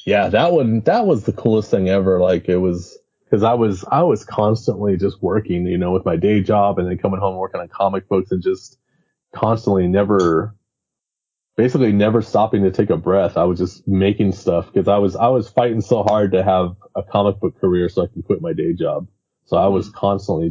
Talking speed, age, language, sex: 220 wpm, 20-39, English, male